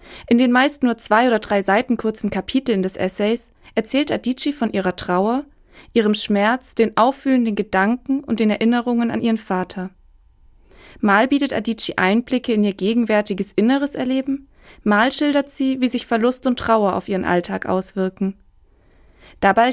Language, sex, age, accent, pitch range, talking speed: German, female, 20-39, German, 200-240 Hz, 150 wpm